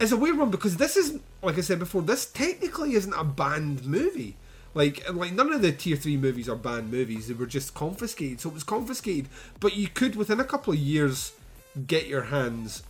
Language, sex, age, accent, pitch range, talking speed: English, male, 30-49, British, 125-175 Hz, 220 wpm